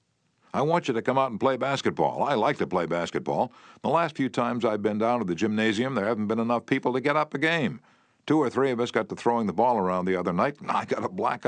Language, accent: English, American